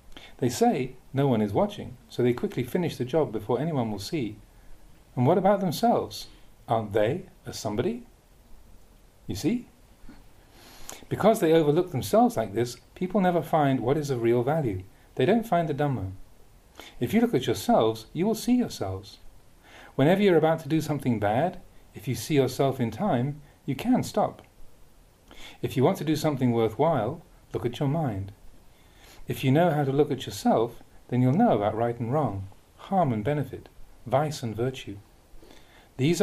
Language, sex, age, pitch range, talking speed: English, male, 40-59, 110-160 Hz, 170 wpm